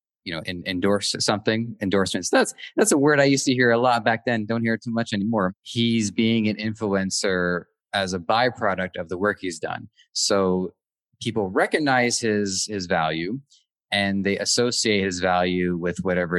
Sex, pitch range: male, 90-115 Hz